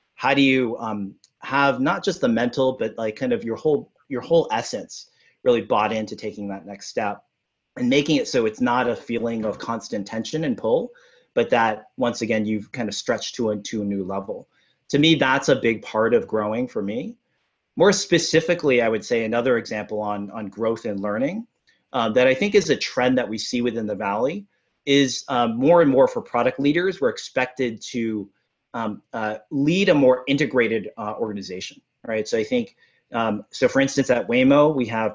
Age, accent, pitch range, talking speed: 30-49, American, 110-175 Hz, 200 wpm